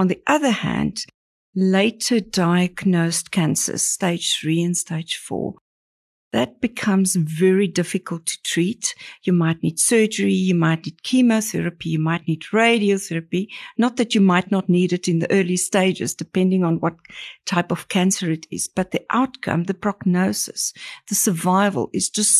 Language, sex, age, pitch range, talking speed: English, female, 50-69, 170-205 Hz, 155 wpm